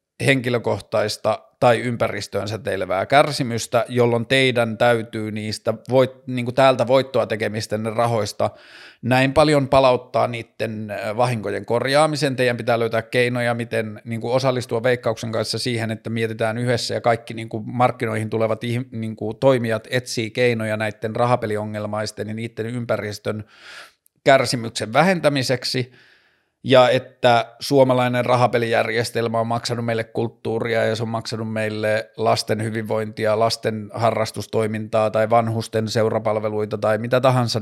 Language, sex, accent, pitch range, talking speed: Finnish, male, native, 110-130 Hz, 120 wpm